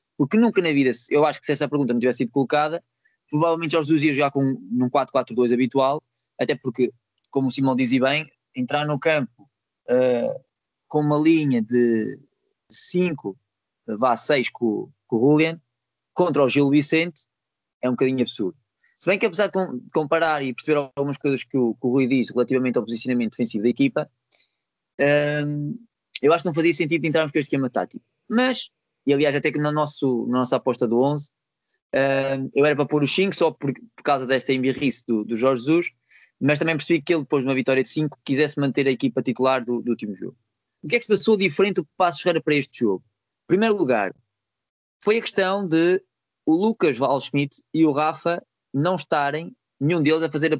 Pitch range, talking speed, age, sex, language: 125-160 Hz, 200 wpm, 20-39, male, Portuguese